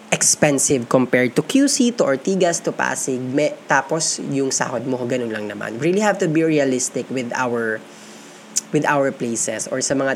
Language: Filipino